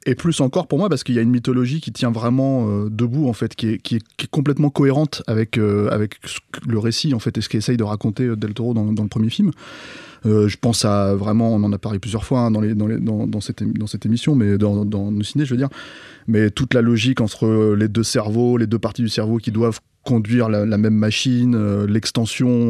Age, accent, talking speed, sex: 20-39, French, 260 wpm, male